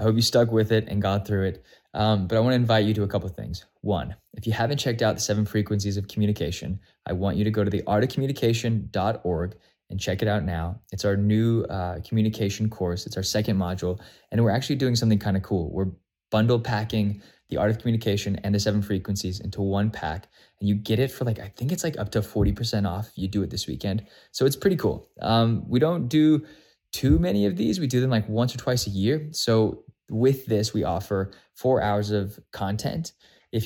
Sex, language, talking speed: male, English, 230 wpm